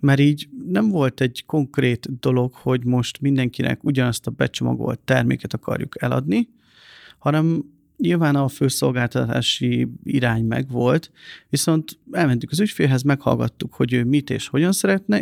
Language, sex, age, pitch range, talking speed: Hungarian, male, 40-59, 125-150 Hz, 130 wpm